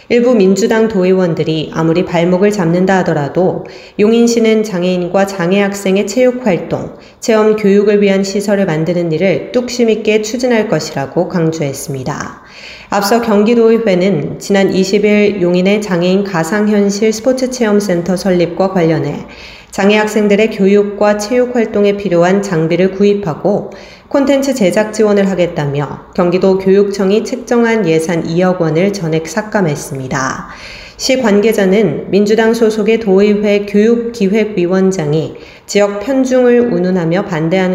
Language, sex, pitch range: Korean, female, 175-210 Hz